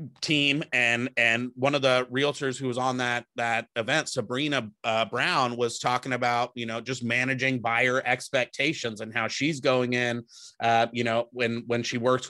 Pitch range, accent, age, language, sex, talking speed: 115-130 Hz, American, 30-49, English, male, 180 wpm